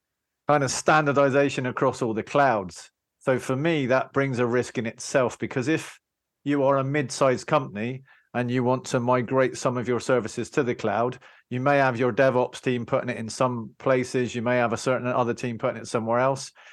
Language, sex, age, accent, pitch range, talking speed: English, male, 40-59, British, 125-145 Hz, 205 wpm